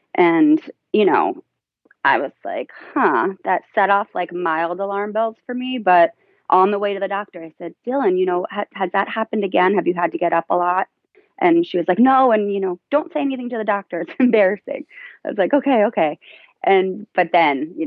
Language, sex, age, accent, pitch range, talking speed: English, female, 30-49, American, 160-235 Hz, 220 wpm